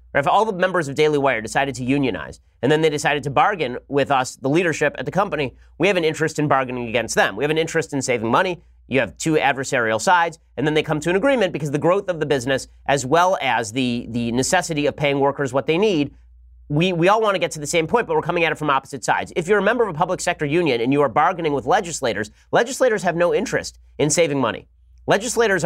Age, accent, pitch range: 30-49, American, 135-175 Hz